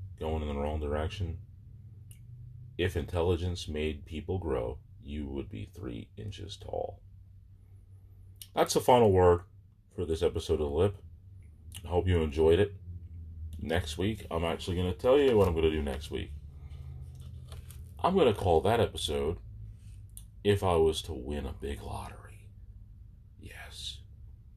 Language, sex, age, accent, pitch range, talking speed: English, male, 40-59, American, 80-100 Hz, 150 wpm